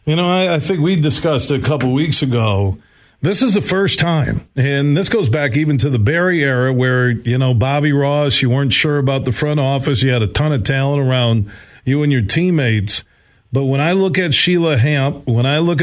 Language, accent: English, American